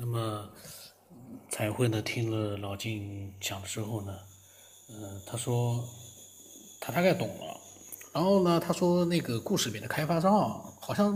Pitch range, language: 110-150 Hz, Chinese